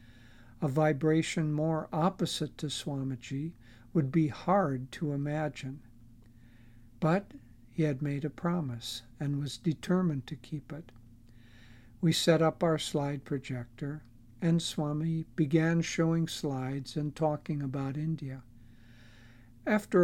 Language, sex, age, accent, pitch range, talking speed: English, male, 60-79, American, 120-160 Hz, 115 wpm